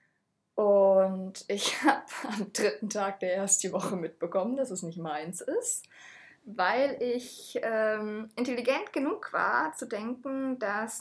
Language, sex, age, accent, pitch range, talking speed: German, female, 20-39, German, 180-235 Hz, 130 wpm